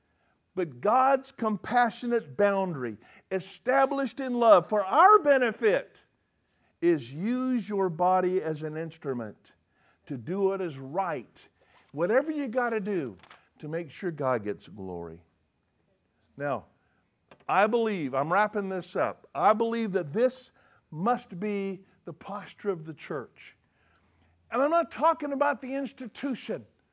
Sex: male